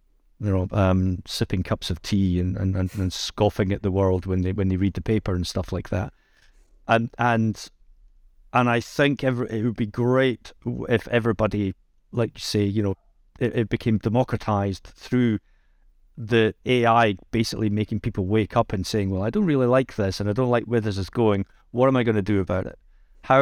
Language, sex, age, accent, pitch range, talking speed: English, male, 40-59, British, 95-115 Hz, 205 wpm